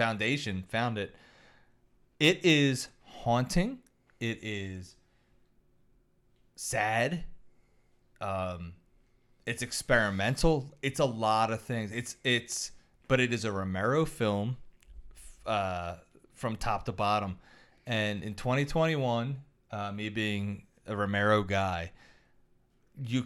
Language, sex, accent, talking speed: English, male, American, 105 wpm